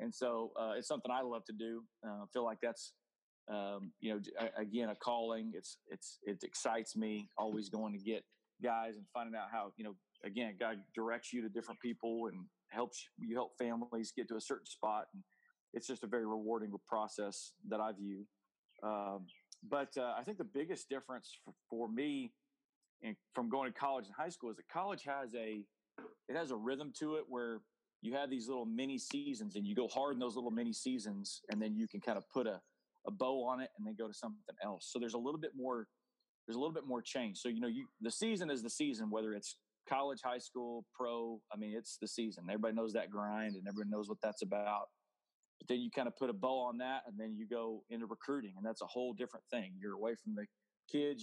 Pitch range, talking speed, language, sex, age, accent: 110-135 Hz, 235 wpm, English, male, 40-59, American